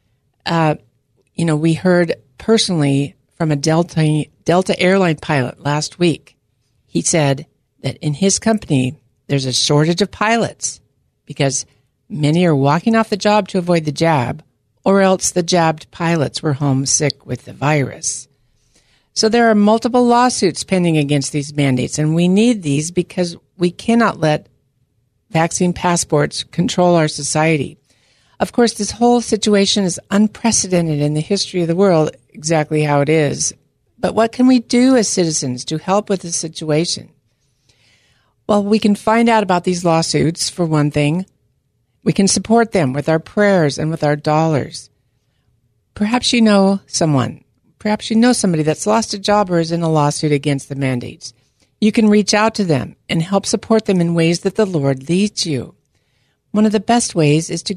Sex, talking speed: female, 170 wpm